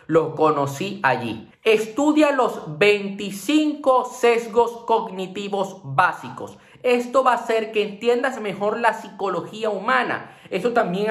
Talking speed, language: 115 wpm, Spanish